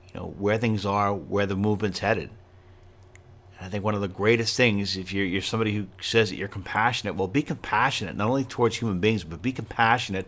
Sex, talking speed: male, 210 wpm